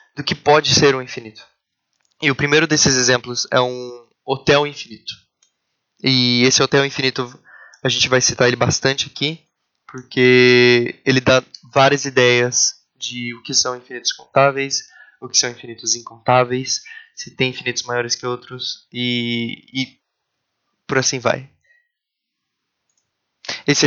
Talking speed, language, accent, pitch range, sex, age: 135 wpm, Portuguese, Brazilian, 125-145 Hz, male, 20-39